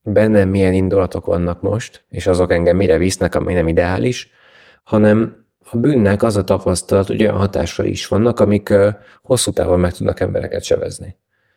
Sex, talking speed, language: male, 160 wpm, Hungarian